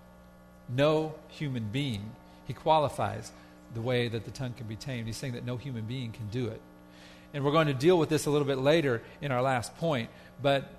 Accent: American